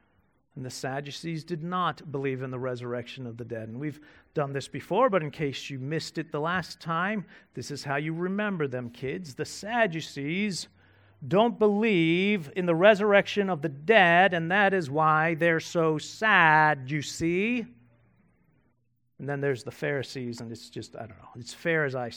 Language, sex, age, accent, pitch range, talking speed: English, male, 40-59, American, 145-215 Hz, 180 wpm